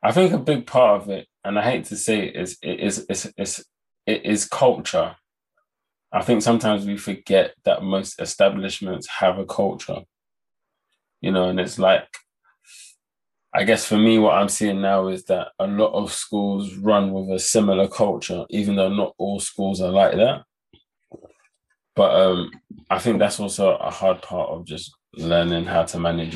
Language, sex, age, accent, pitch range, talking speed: English, male, 20-39, British, 90-110 Hz, 180 wpm